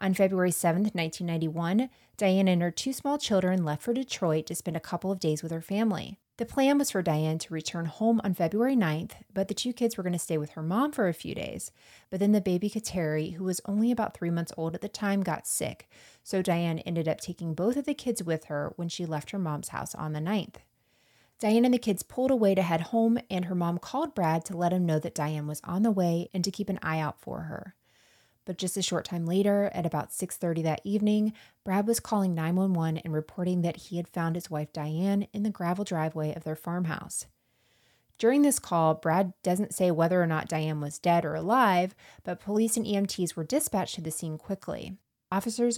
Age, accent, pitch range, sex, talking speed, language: 20-39, American, 160-200 Hz, female, 225 wpm, English